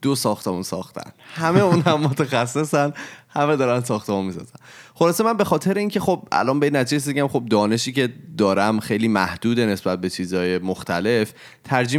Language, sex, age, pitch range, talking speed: Persian, male, 30-49, 100-130 Hz, 155 wpm